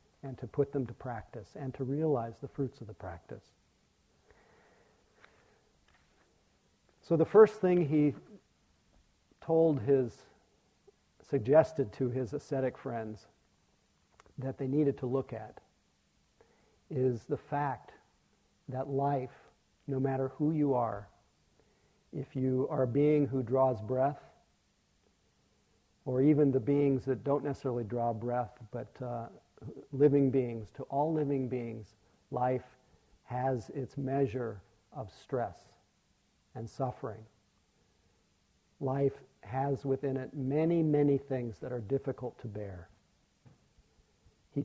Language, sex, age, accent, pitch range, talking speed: English, male, 50-69, American, 120-145 Hz, 120 wpm